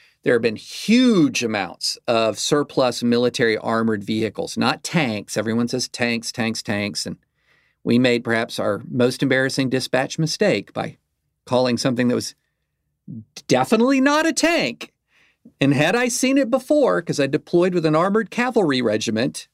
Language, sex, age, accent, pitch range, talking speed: English, male, 50-69, American, 115-160 Hz, 150 wpm